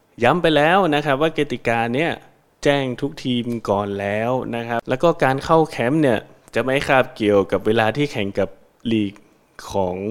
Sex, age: male, 20-39